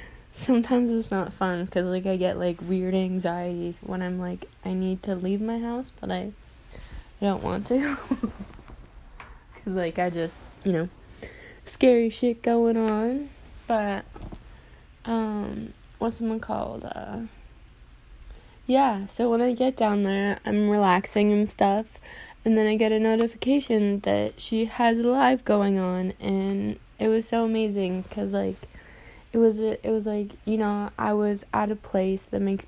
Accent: American